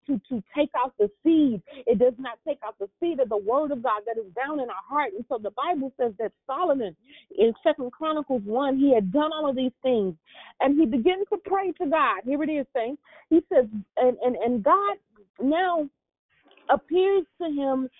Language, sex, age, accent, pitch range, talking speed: English, female, 40-59, American, 230-325 Hz, 210 wpm